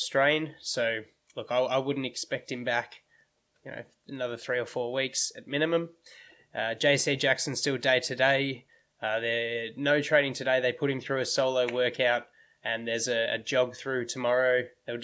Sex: male